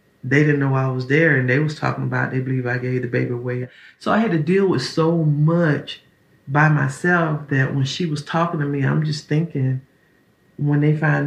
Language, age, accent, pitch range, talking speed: English, 40-59, American, 130-155 Hz, 220 wpm